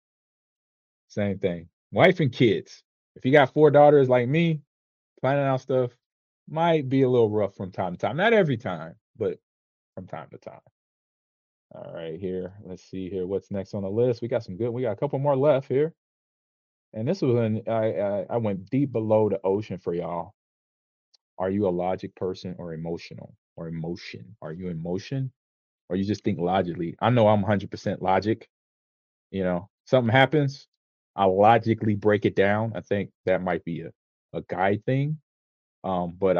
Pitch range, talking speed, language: 90-120 Hz, 180 wpm, English